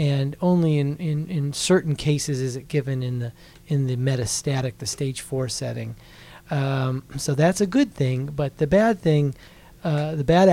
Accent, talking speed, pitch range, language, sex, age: American, 170 wpm, 135-150 Hz, English, male, 40-59